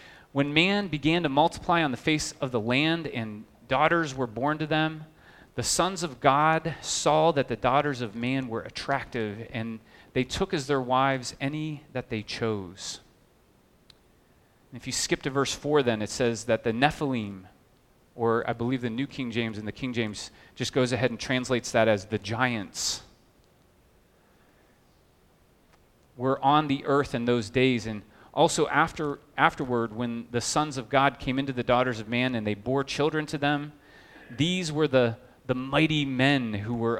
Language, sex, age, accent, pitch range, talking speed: English, male, 30-49, American, 115-145 Hz, 175 wpm